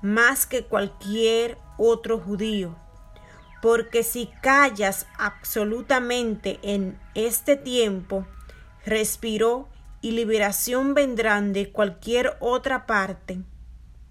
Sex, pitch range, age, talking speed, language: female, 185-225 Hz, 30-49, 85 wpm, Spanish